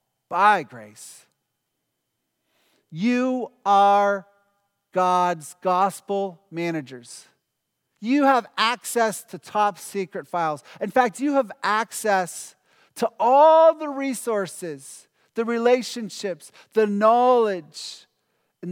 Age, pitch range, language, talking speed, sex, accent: 40-59, 160-215 Hz, English, 90 wpm, male, American